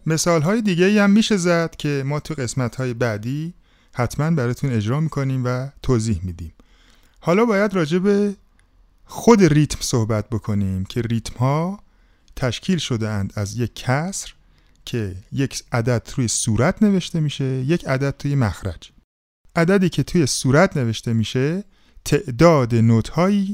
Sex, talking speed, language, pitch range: male, 135 wpm, Persian, 110-155 Hz